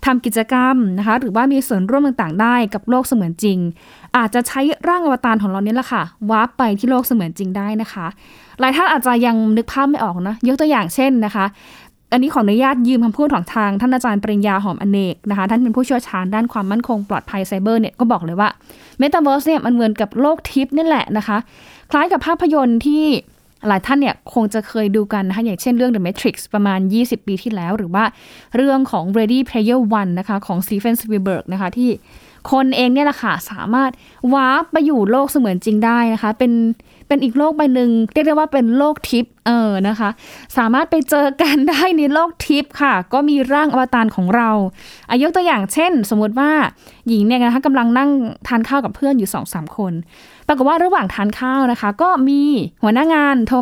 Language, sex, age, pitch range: Thai, female, 20-39, 210-270 Hz